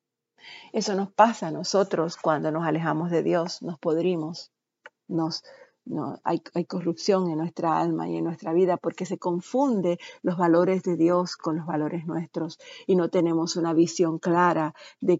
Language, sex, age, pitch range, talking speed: Spanish, female, 50-69, 160-185 Hz, 165 wpm